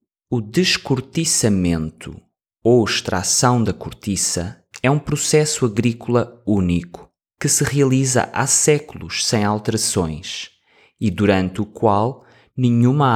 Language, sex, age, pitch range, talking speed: English, male, 20-39, 100-130 Hz, 105 wpm